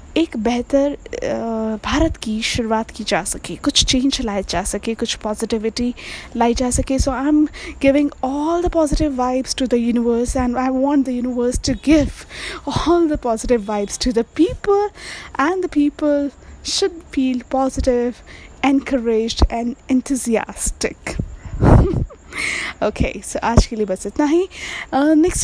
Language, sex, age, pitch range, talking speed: Hindi, female, 20-39, 235-295 Hz, 145 wpm